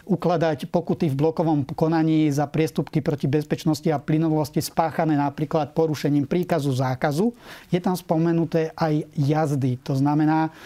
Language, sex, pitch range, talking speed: Slovak, male, 150-165 Hz, 130 wpm